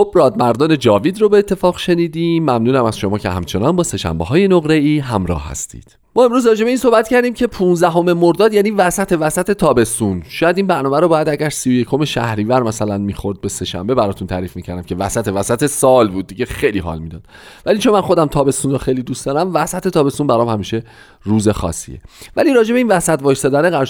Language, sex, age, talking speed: Persian, male, 30-49, 190 wpm